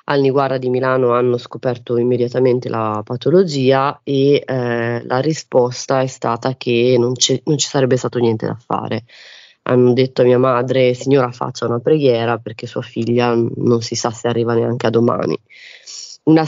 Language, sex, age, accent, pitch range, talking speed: Italian, female, 20-39, native, 120-135 Hz, 170 wpm